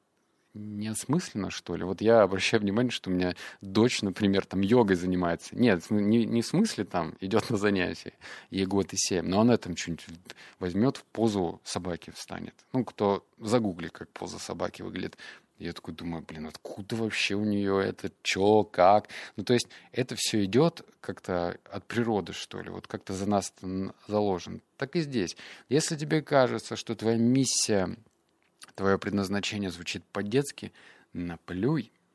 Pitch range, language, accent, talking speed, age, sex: 90-115 Hz, Russian, native, 160 wpm, 20-39, male